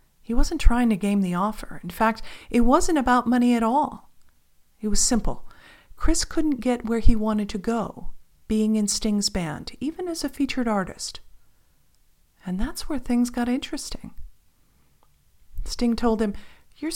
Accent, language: American, English